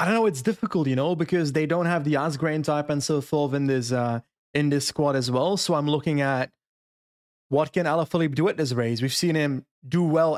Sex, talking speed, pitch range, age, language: male, 235 wpm, 140-175 Hz, 20-39, English